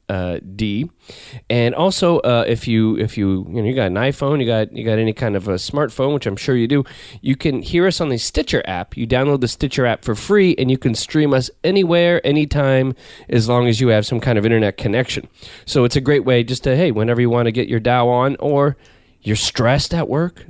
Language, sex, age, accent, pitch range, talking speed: English, male, 30-49, American, 115-145 Hz, 240 wpm